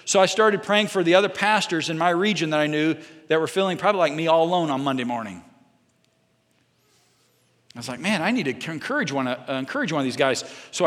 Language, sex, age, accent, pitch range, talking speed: English, male, 40-59, American, 150-200 Hz, 215 wpm